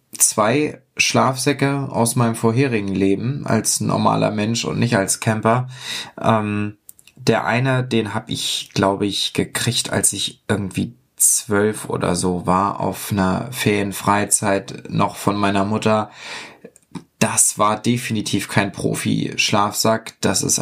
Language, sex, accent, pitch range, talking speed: German, male, German, 105-135 Hz, 125 wpm